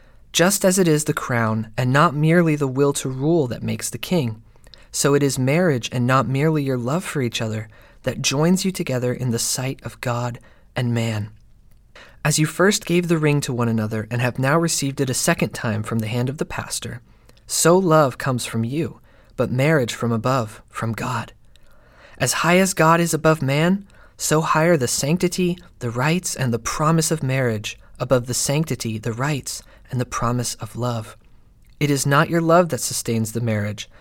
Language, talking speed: English, 195 wpm